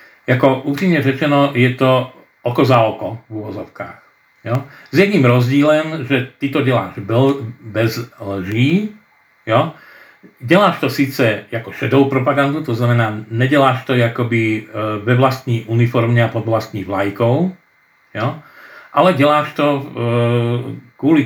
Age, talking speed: 50-69, 120 wpm